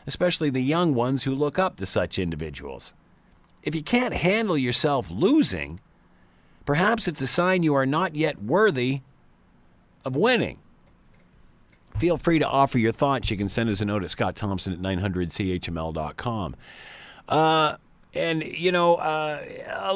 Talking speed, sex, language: 145 wpm, male, English